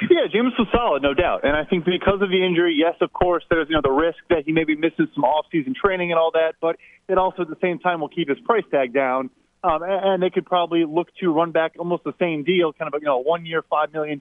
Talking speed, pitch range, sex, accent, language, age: 270 wpm, 155-185 Hz, male, American, English, 30-49